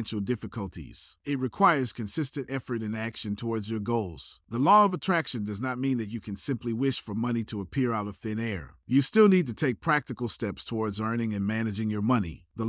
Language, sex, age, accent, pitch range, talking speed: English, male, 40-59, American, 105-130 Hz, 210 wpm